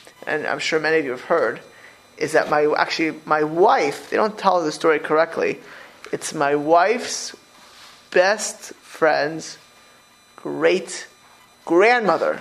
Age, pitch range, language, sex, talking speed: 30-49, 145-175 Hz, English, male, 125 wpm